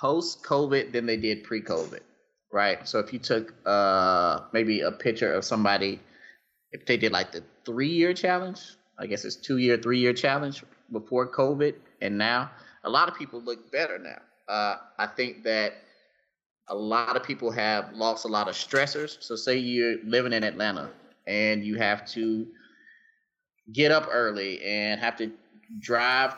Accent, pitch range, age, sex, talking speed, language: American, 110-135 Hz, 20-39, male, 160 wpm, English